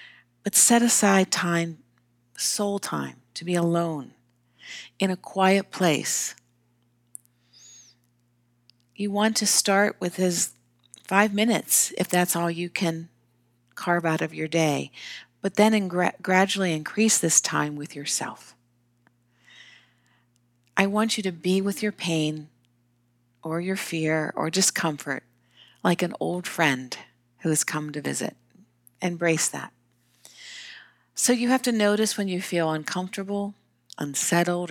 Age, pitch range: 50-69, 120-195 Hz